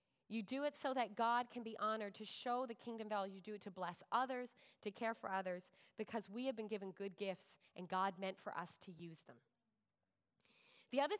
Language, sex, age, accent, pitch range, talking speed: English, female, 30-49, American, 200-260 Hz, 220 wpm